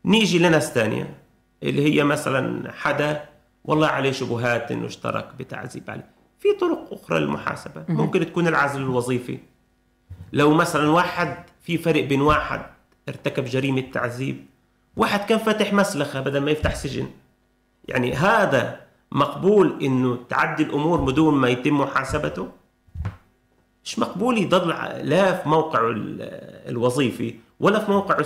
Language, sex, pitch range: Arabic, male, 120-155 Hz